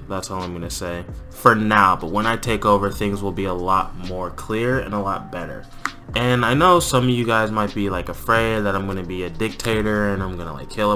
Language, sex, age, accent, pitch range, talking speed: English, male, 20-39, American, 100-125 Hz, 250 wpm